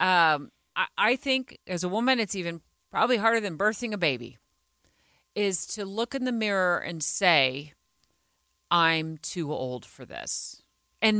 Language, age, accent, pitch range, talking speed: English, 40-59, American, 170-230 Hz, 155 wpm